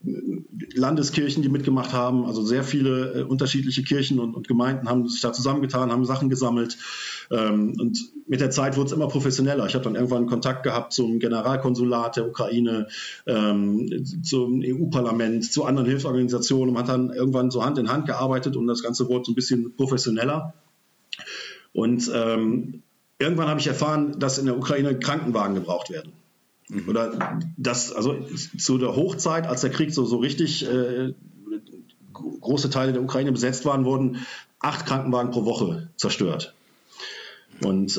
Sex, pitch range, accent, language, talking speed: male, 120-140 Hz, German, German, 150 wpm